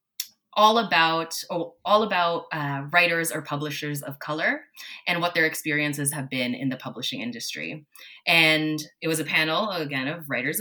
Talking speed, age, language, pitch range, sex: 160 wpm, 20-39, English, 150-195 Hz, female